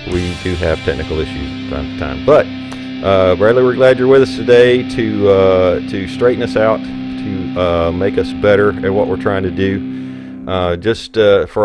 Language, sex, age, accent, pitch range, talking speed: English, male, 40-59, American, 90-115 Hz, 200 wpm